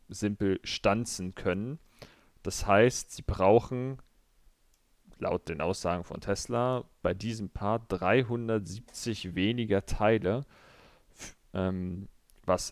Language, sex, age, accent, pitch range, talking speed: German, male, 40-59, German, 90-110 Hz, 95 wpm